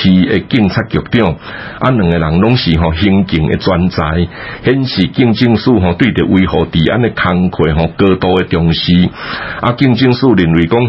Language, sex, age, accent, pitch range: Chinese, male, 60-79, Malaysian, 85-115 Hz